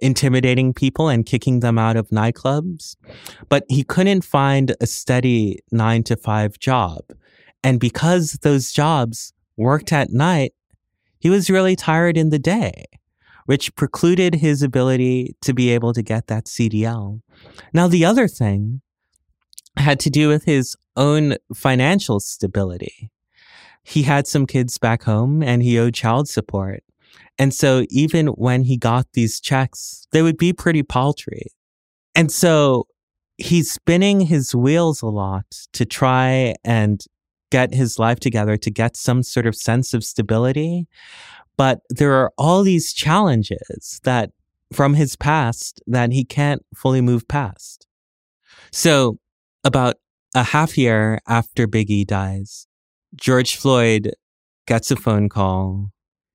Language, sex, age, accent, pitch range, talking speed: English, male, 30-49, American, 110-145 Hz, 140 wpm